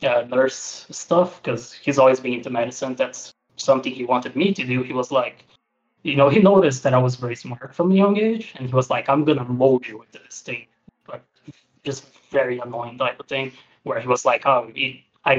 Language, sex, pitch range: English, male, 125-140 Hz